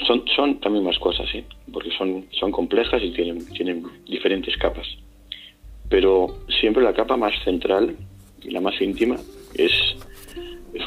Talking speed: 150 wpm